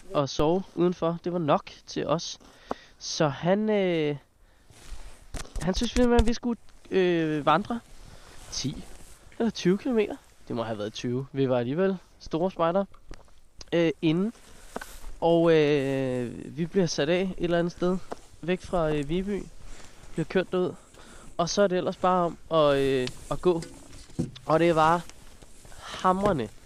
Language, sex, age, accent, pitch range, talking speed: Danish, male, 20-39, native, 160-195 Hz, 150 wpm